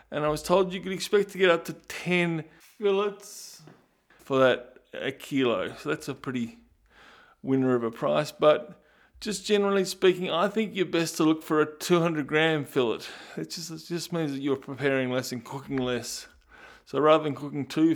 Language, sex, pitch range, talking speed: English, male, 130-165 Hz, 190 wpm